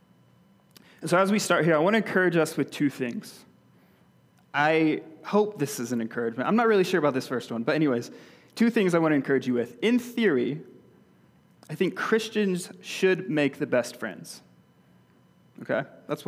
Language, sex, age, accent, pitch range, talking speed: English, male, 20-39, American, 140-175 Hz, 180 wpm